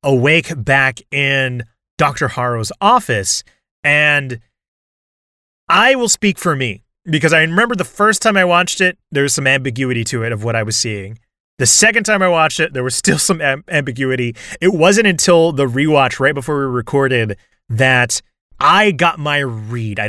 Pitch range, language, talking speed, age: 125-165 Hz, English, 175 wpm, 30-49